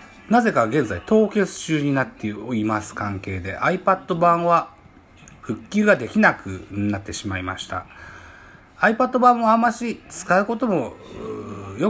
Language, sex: Japanese, male